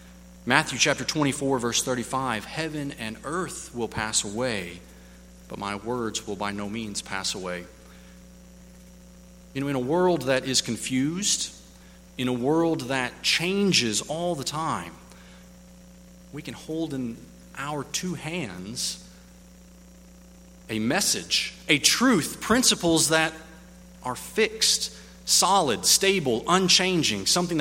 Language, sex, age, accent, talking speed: English, male, 30-49, American, 120 wpm